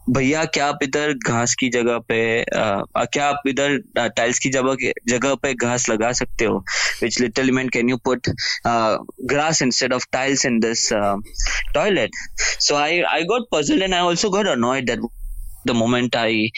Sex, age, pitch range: male, 20-39, 115-135 Hz